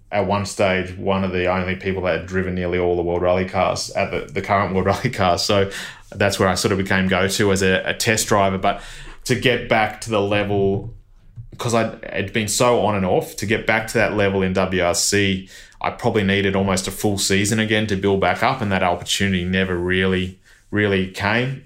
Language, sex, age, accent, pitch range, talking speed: English, male, 20-39, Australian, 95-105 Hz, 220 wpm